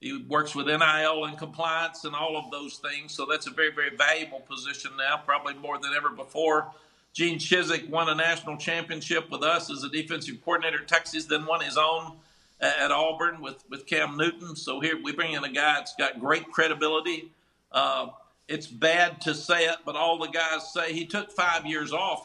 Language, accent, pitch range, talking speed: English, American, 155-180 Hz, 200 wpm